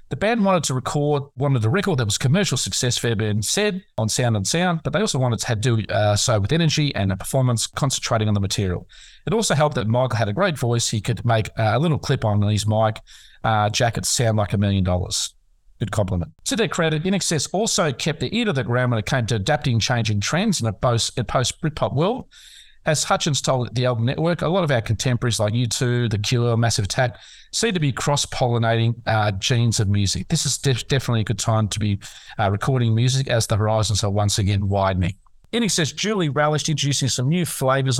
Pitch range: 110-145 Hz